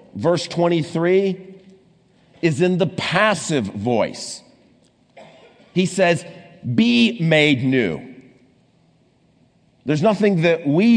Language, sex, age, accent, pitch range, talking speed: English, male, 50-69, American, 155-210 Hz, 90 wpm